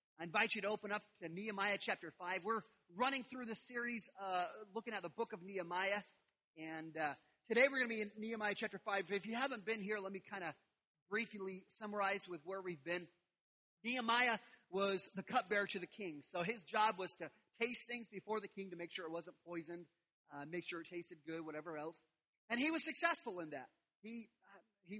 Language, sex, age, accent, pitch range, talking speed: English, male, 30-49, American, 175-225 Hz, 210 wpm